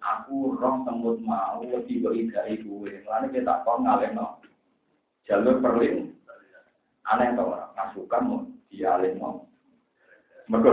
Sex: male